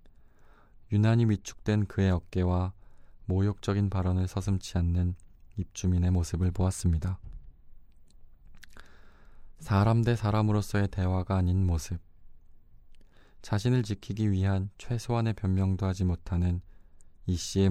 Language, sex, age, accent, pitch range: Korean, male, 20-39, native, 85-100 Hz